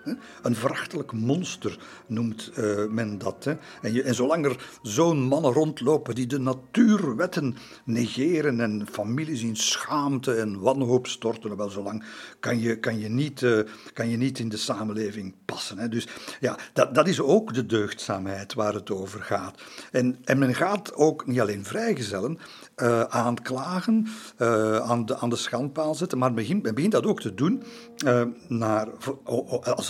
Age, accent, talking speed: 50-69, Belgian, 160 wpm